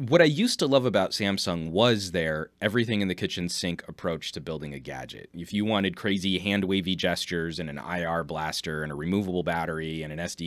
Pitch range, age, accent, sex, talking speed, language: 85-105 Hz, 20-39, American, male, 205 wpm, English